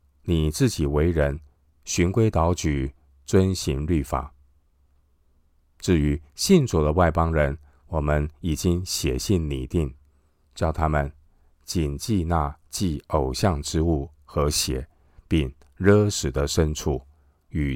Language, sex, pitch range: Chinese, male, 70-85 Hz